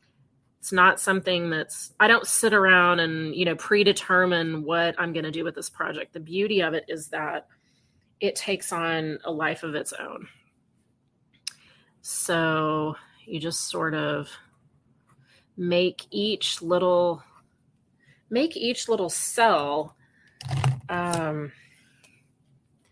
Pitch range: 155-185 Hz